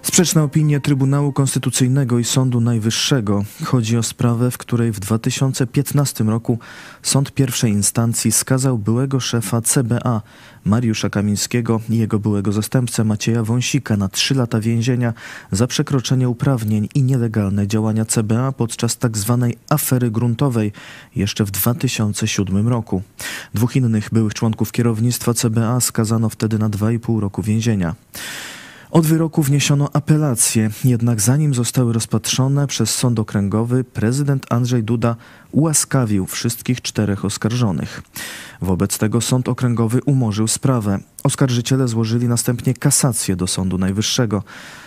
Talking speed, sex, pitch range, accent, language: 125 wpm, male, 110-130 Hz, native, Polish